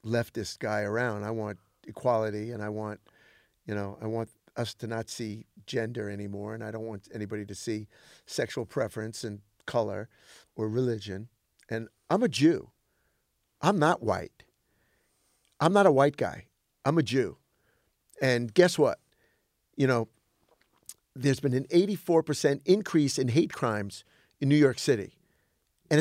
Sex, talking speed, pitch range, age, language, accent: male, 150 wpm, 110-160 Hz, 50-69, English, American